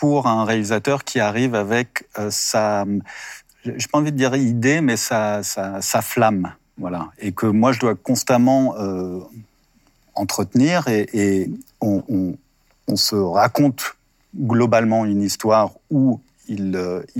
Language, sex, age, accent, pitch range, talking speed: French, male, 50-69, French, 100-125 Hz, 145 wpm